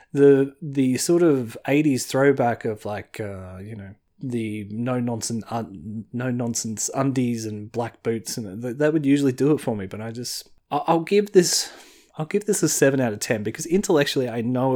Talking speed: 195 wpm